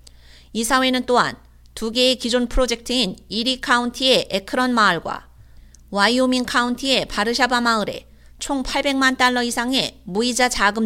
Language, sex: Korean, female